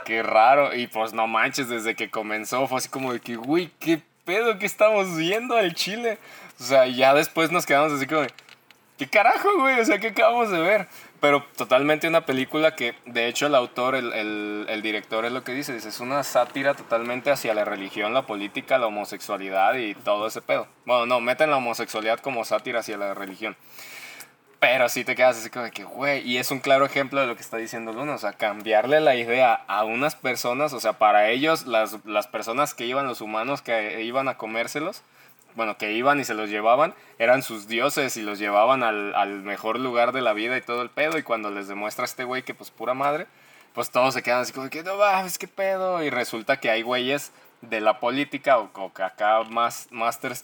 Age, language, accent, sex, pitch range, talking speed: 20-39, Spanish, Mexican, male, 110-145 Hz, 220 wpm